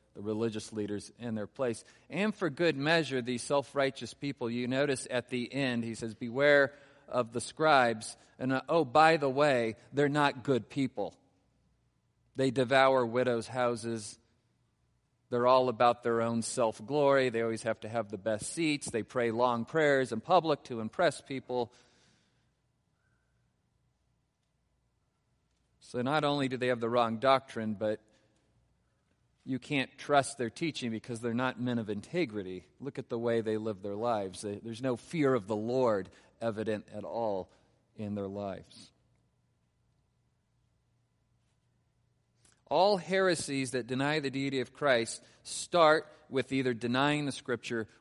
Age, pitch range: 40-59, 110-135 Hz